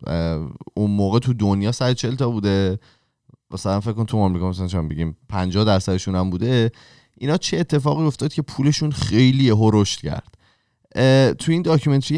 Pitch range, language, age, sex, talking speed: 95-125 Hz, Persian, 20-39, male, 155 wpm